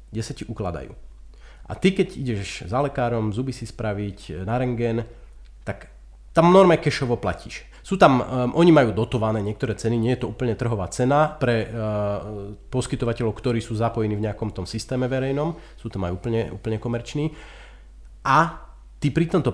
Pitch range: 105-140 Hz